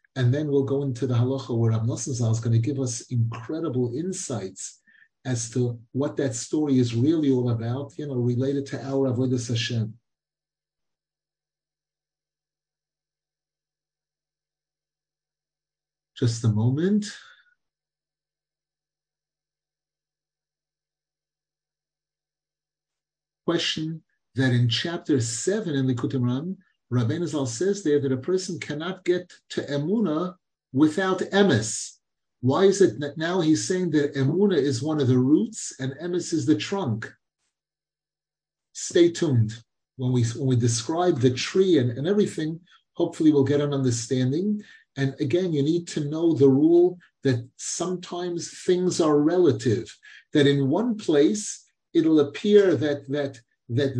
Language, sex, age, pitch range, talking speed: English, male, 50-69, 130-170 Hz, 125 wpm